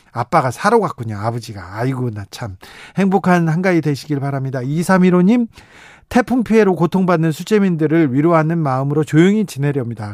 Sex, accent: male, native